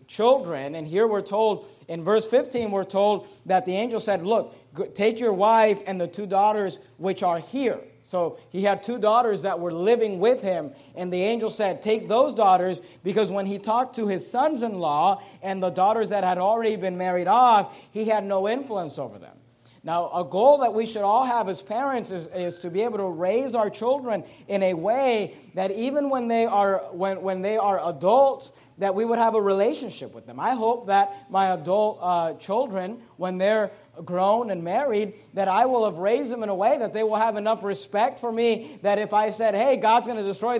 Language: English